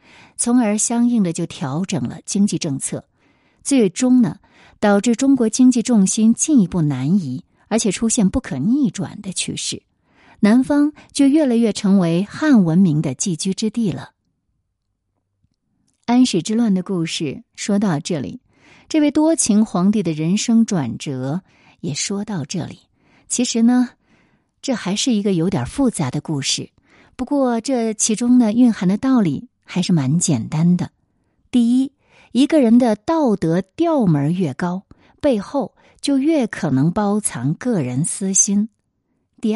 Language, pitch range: Chinese, 170-245 Hz